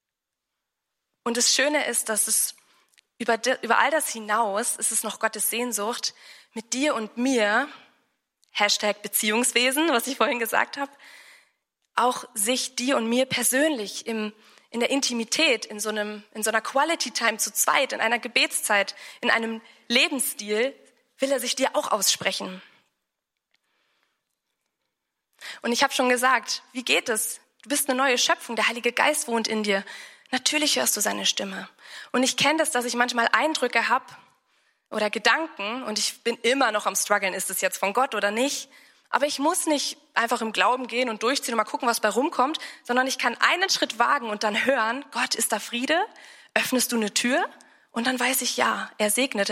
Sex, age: female, 20-39